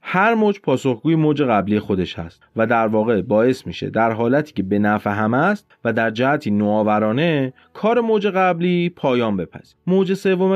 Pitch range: 100-155 Hz